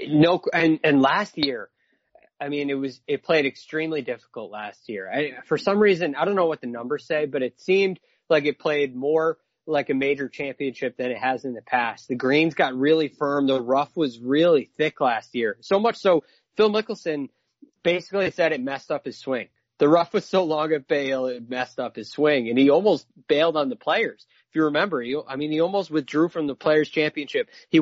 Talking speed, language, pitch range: 215 wpm, English, 140-170 Hz